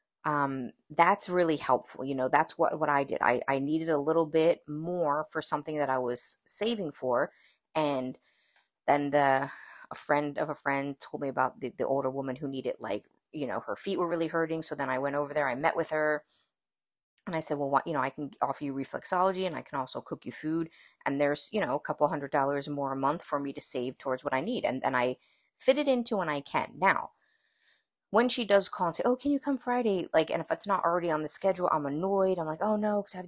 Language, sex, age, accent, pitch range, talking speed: English, female, 30-49, American, 135-185 Hz, 245 wpm